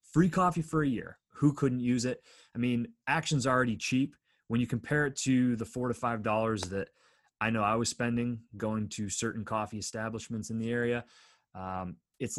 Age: 30-49